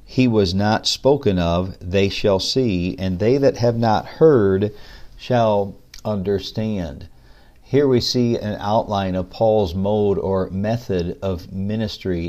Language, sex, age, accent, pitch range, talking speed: English, male, 50-69, American, 95-115 Hz, 135 wpm